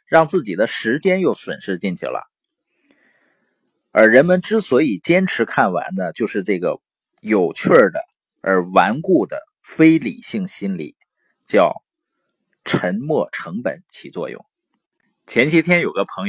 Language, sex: Chinese, male